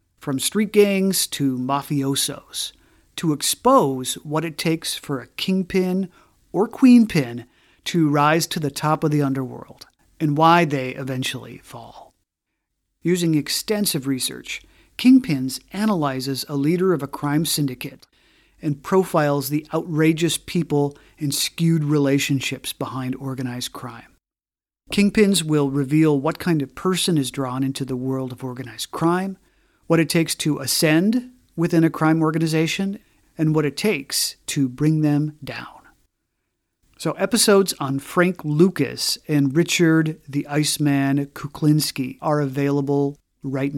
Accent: American